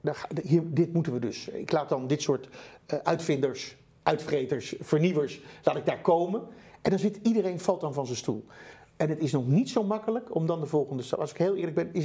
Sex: male